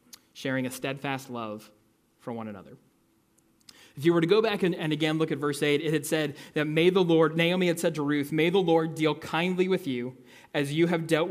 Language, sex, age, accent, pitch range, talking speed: English, male, 20-39, American, 140-175 Hz, 230 wpm